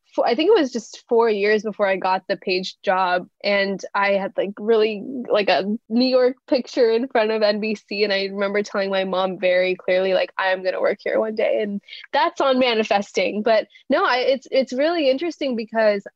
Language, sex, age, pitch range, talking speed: English, female, 10-29, 190-225 Hz, 200 wpm